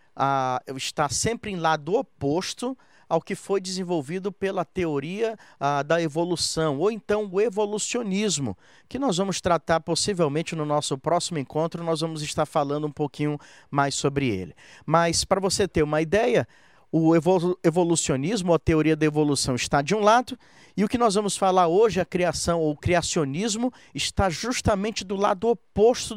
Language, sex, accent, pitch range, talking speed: Portuguese, male, Brazilian, 150-195 Hz, 160 wpm